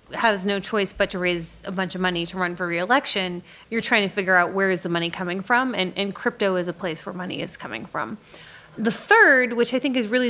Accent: American